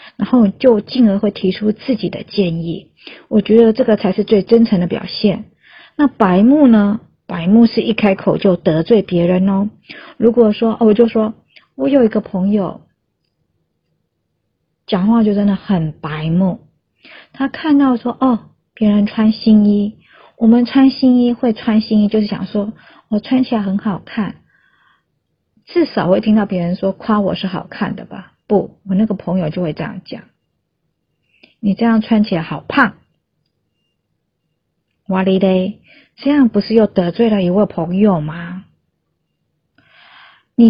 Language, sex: Chinese, female